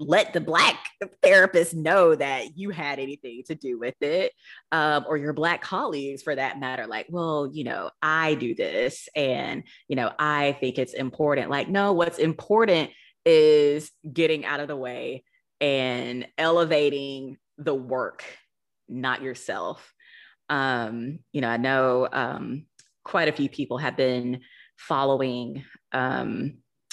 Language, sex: English, female